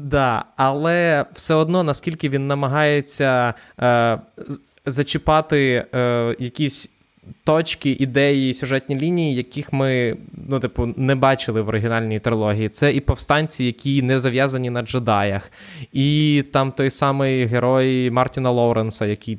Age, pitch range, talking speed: 20-39, 115-135 Hz, 125 wpm